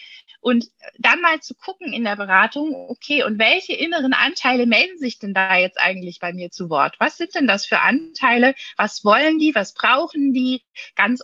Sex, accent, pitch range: female, German, 200-250 Hz